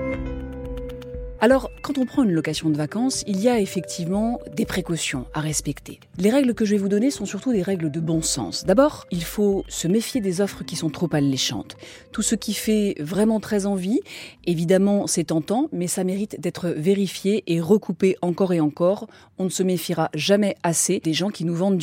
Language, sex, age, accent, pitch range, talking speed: French, female, 30-49, French, 170-230 Hz, 200 wpm